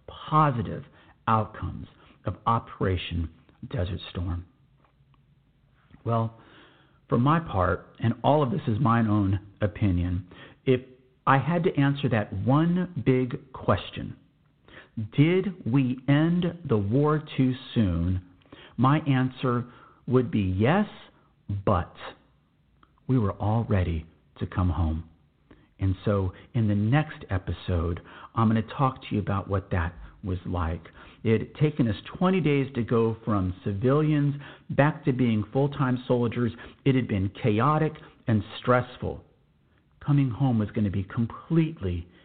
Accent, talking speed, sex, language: American, 130 wpm, male, English